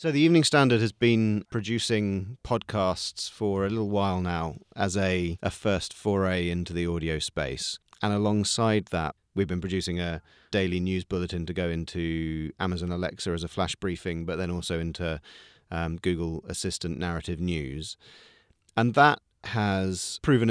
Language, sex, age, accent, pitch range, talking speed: English, male, 30-49, British, 85-105 Hz, 160 wpm